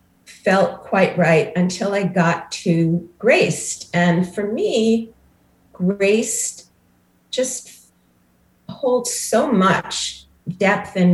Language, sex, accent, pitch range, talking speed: English, female, American, 160-195 Hz, 95 wpm